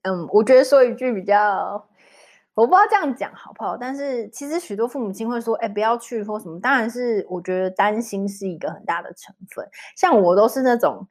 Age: 20-39